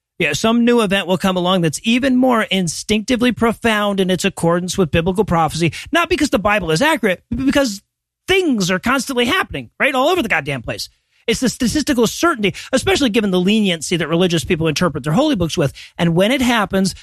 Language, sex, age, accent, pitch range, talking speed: English, male, 40-59, American, 175-245 Hz, 195 wpm